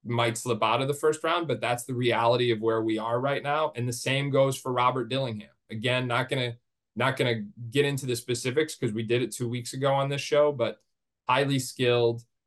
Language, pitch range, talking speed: English, 115-135 Hz, 230 wpm